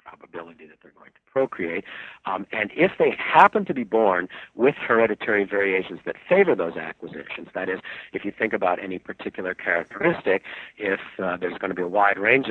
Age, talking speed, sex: 50-69, 185 wpm, male